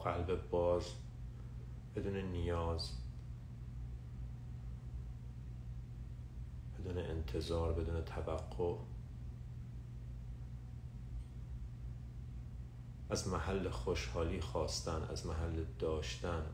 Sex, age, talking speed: male, 40-59, 55 wpm